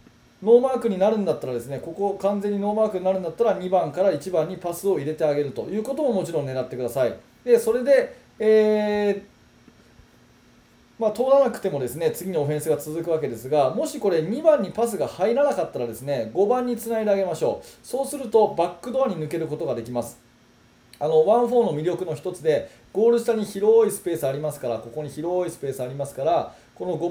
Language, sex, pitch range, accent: Japanese, male, 150-220 Hz, native